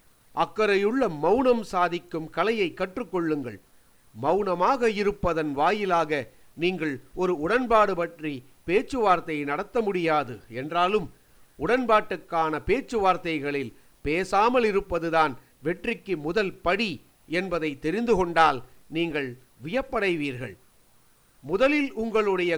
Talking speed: 80 wpm